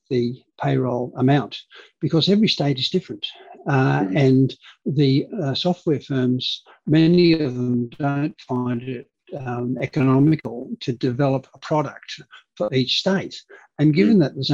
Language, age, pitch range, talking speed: English, 60-79, 125-160 Hz, 135 wpm